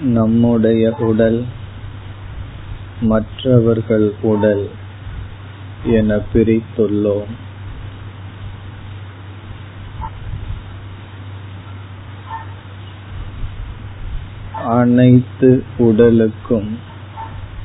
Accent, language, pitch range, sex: native, Tamil, 100-110 Hz, male